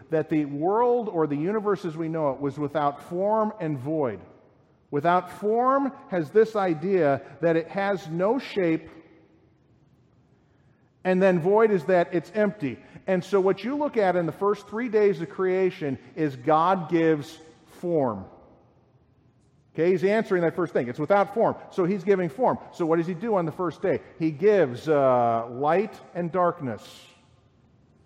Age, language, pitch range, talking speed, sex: 50-69, English, 150-195 Hz, 165 wpm, male